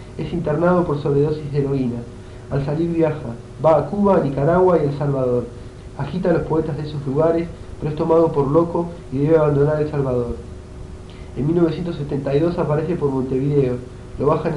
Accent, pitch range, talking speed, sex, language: Argentinian, 125-165 Hz, 170 wpm, male, Spanish